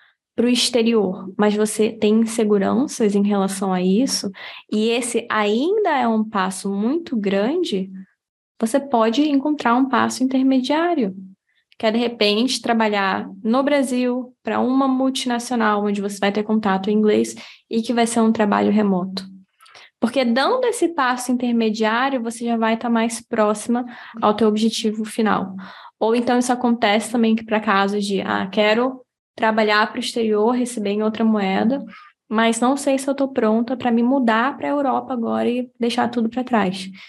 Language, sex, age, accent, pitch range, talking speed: Portuguese, female, 10-29, Brazilian, 210-255 Hz, 165 wpm